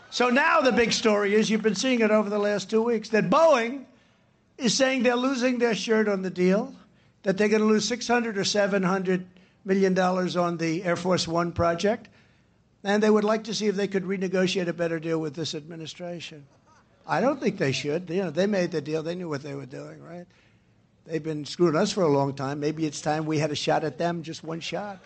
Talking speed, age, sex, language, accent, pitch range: 225 wpm, 60-79, male, English, American, 160-210 Hz